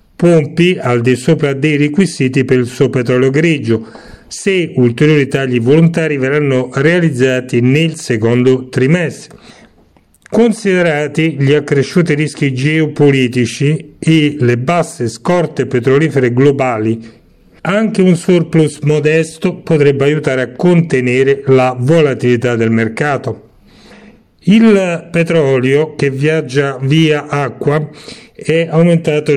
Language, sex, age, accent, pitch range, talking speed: Italian, male, 40-59, native, 130-160 Hz, 105 wpm